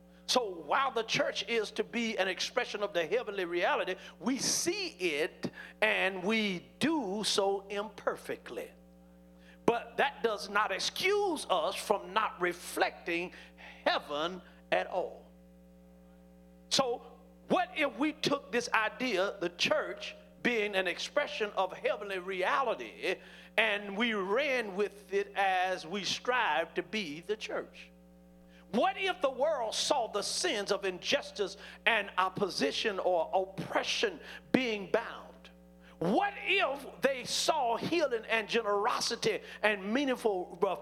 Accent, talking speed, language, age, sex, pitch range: American, 125 wpm, English, 50-69, male, 180-255 Hz